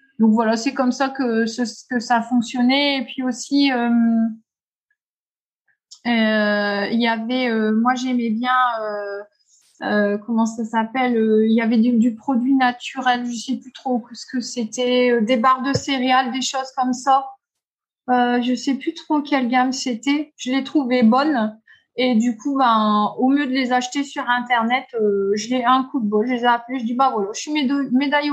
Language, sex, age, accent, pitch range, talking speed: French, female, 20-39, French, 235-285 Hz, 195 wpm